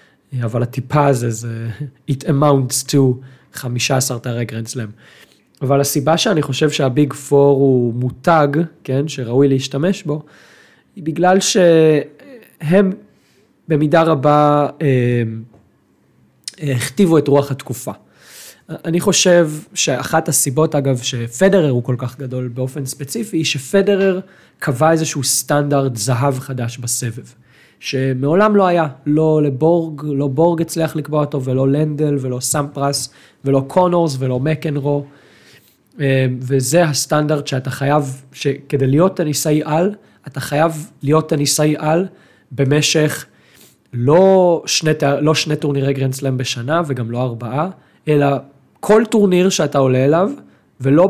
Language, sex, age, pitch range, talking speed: Hebrew, male, 20-39, 130-160 Hz, 120 wpm